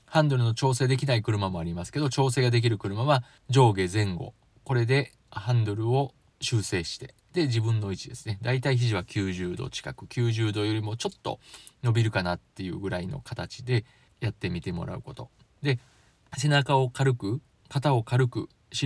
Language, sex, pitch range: Japanese, male, 100-130 Hz